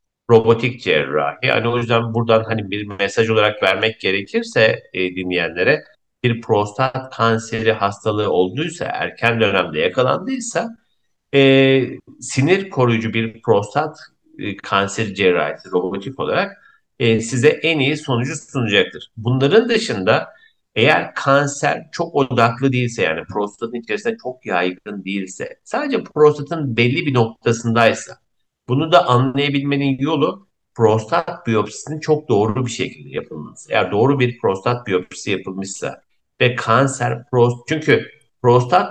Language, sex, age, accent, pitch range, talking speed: Turkish, male, 50-69, native, 110-145 Hz, 120 wpm